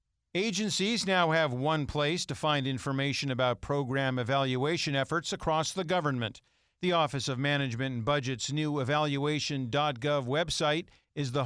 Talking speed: 135 wpm